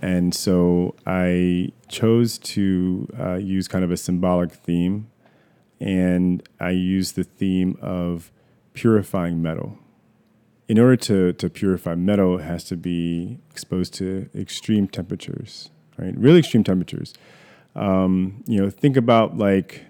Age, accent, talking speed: 30-49, American, 135 wpm